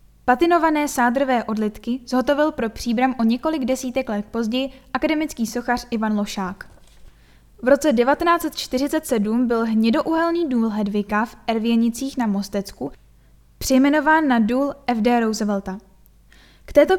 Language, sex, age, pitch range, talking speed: Czech, female, 10-29, 215-270 Hz, 115 wpm